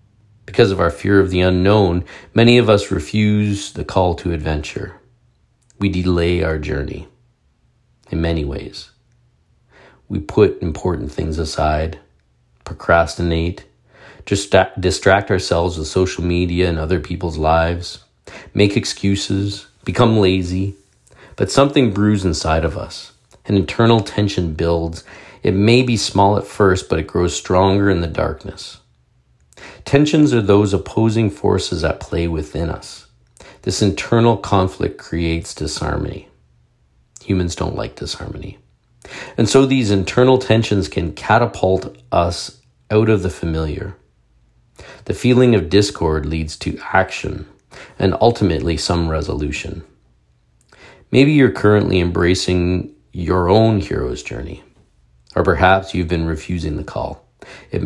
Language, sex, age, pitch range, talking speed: English, male, 40-59, 80-105 Hz, 125 wpm